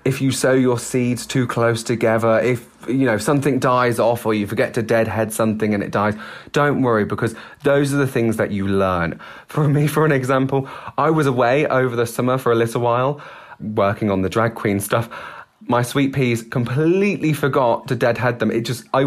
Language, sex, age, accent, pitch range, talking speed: English, male, 30-49, British, 110-140 Hz, 210 wpm